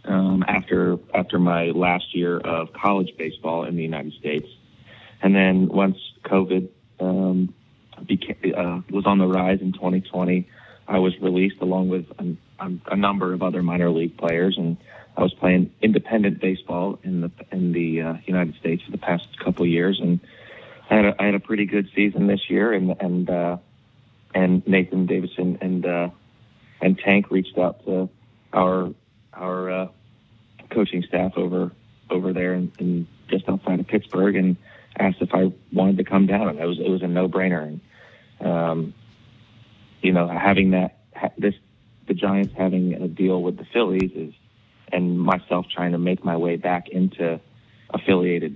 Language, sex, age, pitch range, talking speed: English, male, 30-49, 90-100 Hz, 170 wpm